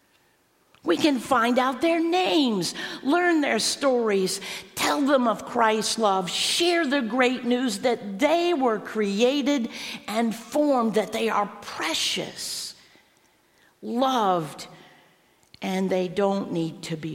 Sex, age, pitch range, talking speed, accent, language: female, 50-69, 185-255 Hz, 125 wpm, American, English